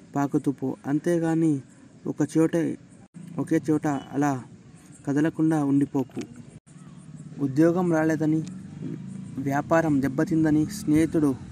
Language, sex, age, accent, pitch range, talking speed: Telugu, male, 20-39, native, 145-160 Hz, 70 wpm